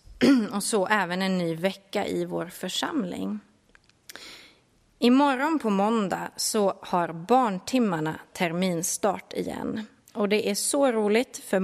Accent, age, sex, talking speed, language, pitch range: native, 30-49, female, 120 wpm, Swedish, 185-245 Hz